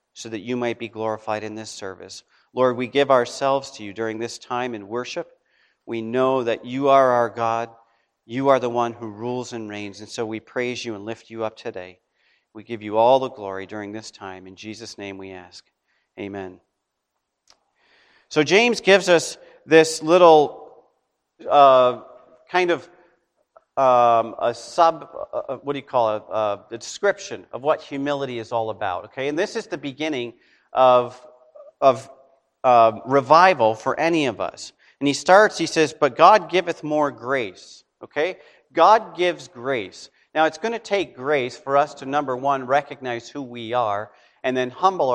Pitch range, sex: 115-155 Hz, male